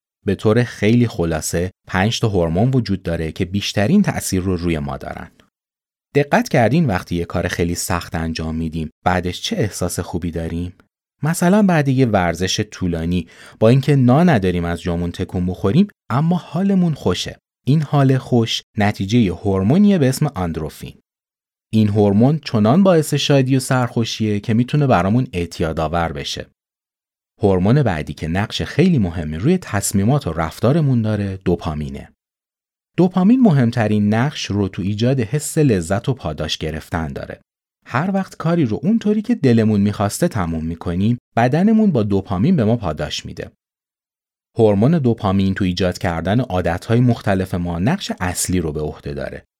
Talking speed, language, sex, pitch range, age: 145 wpm, Persian, male, 90-135 Hz, 30-49